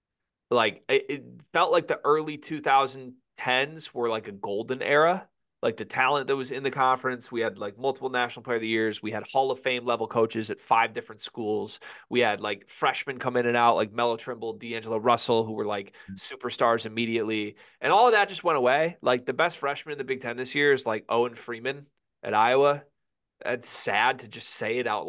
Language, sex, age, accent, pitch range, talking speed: English, male, 30-49, American, 115-145 Hz, 210 wpm